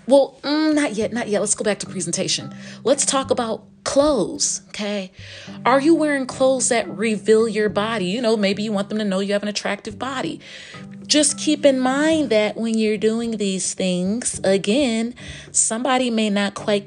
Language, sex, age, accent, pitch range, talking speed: English, female, 30-49, American, 185-255 Hz, 180 wpm